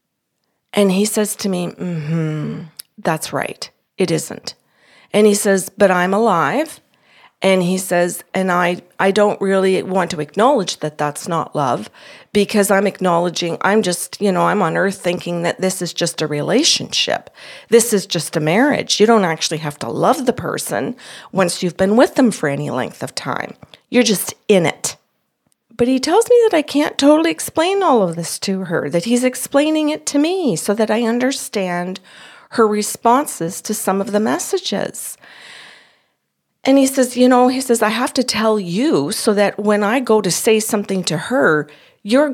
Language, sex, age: English, female, 40-59